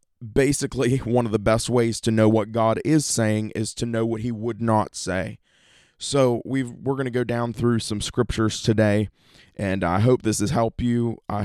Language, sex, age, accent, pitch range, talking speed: English, male, 20-39, American, 105-120 Hz, 200 wpm